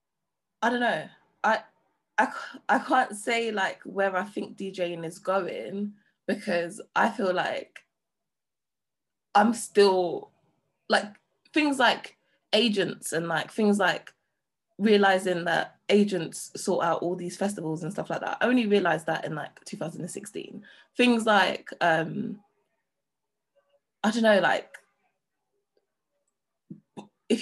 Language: English